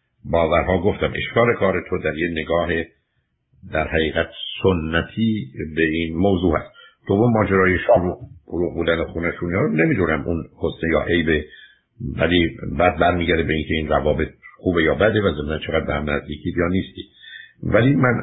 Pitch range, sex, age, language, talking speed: 80-105 Hz, male, 60-79, Persian, 160 wpm